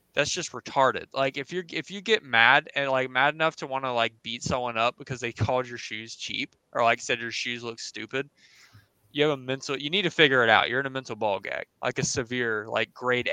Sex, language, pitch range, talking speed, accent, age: male, English, 120-150 Hz, 250 wpm, American, 20-39